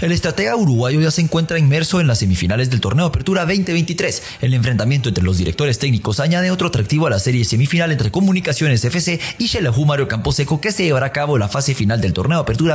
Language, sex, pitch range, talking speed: English, male, 115-170 Hz, 220 wpm